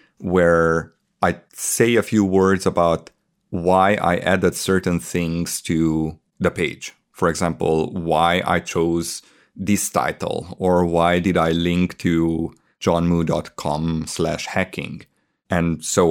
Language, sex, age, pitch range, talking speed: English, male, 30-49, 85-100 Hz, 125 wpm